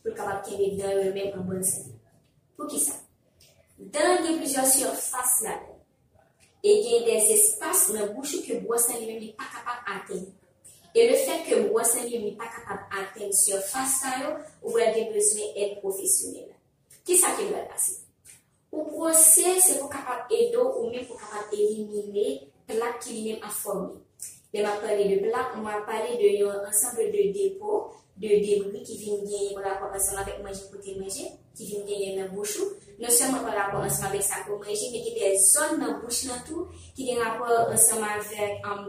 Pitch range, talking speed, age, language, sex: 205-325 Hz, 170 wpm, 20-39, French, female